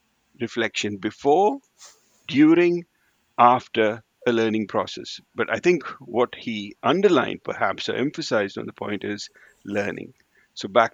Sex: male